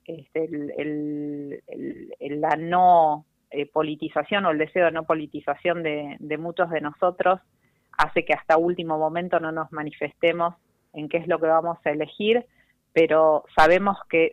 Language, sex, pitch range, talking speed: Spanish, female, 155-180 Hz, 140 wpm